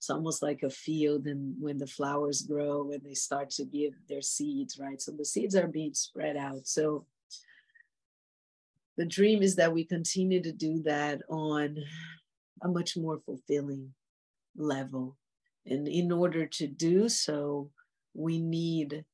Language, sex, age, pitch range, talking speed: English, female, 50-69, 145-165 Hz, 155 wpm